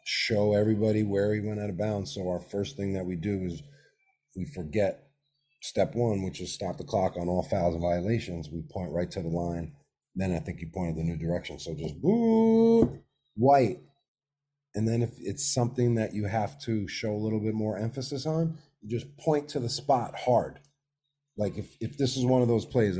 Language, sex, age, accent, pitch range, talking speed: English, male, 30-49, American, 100-145 Hz, 210 wpm